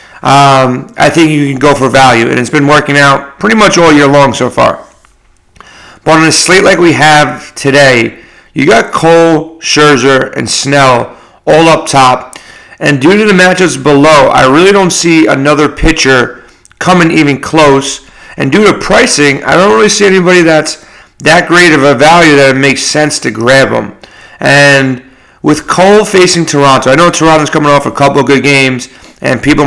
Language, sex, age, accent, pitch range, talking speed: English, male, 40-59, American, 135-160 Hz, 185 wpm